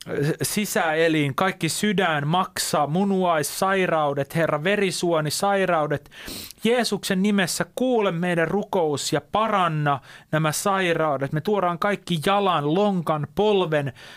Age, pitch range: 30-49, 155-200 Hz